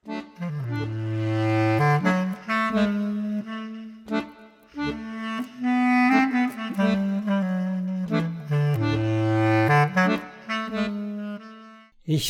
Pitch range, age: 130-195 Hz, 60-79